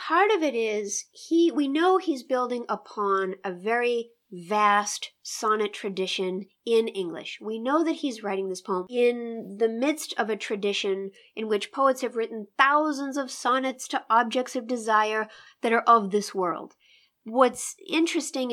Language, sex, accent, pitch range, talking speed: English, female, American, 195-255 Hz, 160 wpm